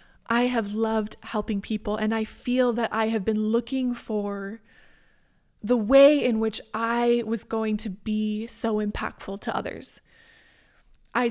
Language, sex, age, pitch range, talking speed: English, female, 20-39, 220-255 Hz, 150 wpm